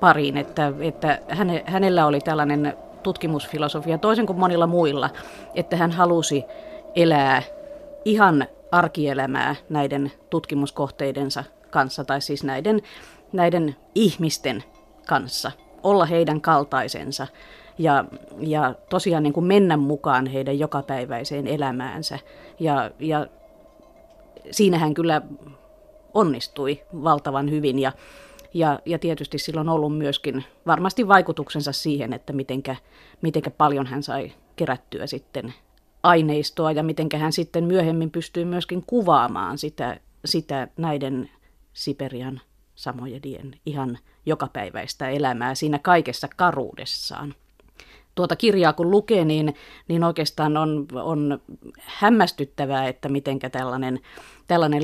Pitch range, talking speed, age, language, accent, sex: 135-170 Hz, 110 wpm, 30-49, Finnish, native, female